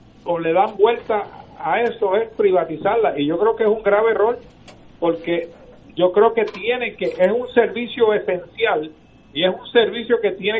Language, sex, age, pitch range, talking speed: Spanish, male, 50-69, 180-225 Hz, 180 wpm